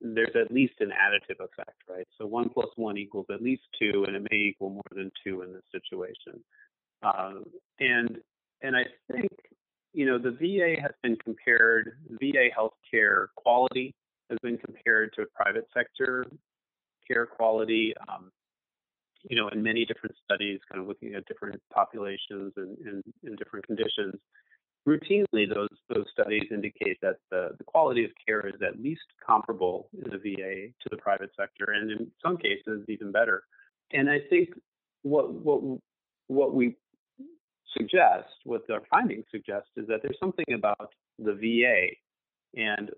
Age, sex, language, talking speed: 30-49, male, English, 160 wpm